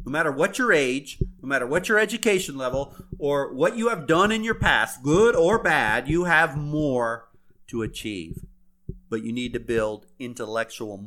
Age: 40-59